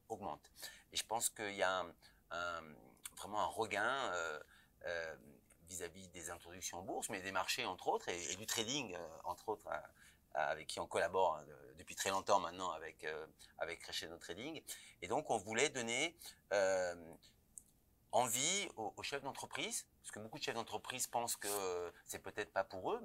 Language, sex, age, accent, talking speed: French, male, 30-49, French, 180 wpm